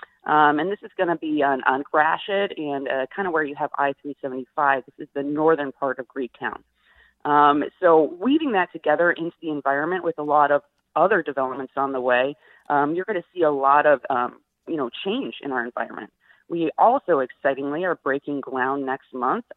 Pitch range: 140-165 Hz